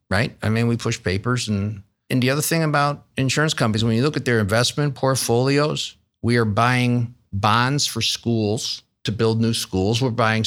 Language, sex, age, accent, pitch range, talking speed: English, male, 50-69, American, 100-125 Hz, 190 wpm